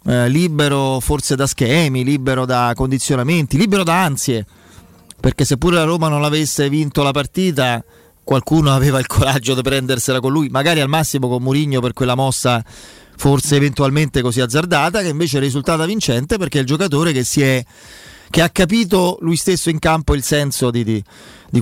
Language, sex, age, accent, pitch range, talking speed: Italian, male, 30-49, native, 125-160 Hz, 175 wpm